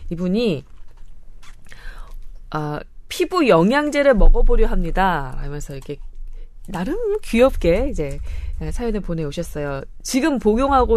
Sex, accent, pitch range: female, native, 155-235 Hz